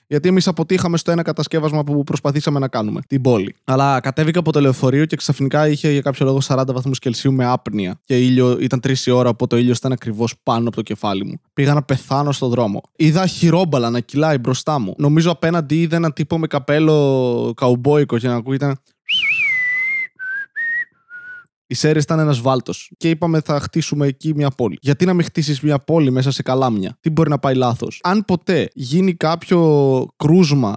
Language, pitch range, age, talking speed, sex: Greek, 130-170 Hz, 20-39, 185 wpm, male